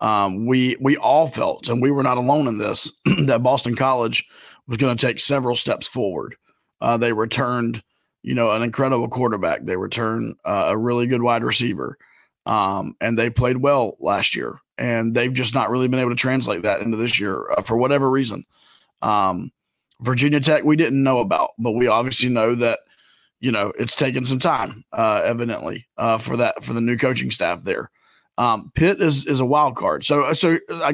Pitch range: 120-145 Hz